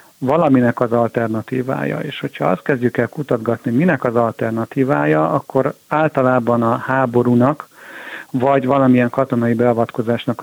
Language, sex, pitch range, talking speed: Hungarian, male, 120-140 Hz, 115 wpm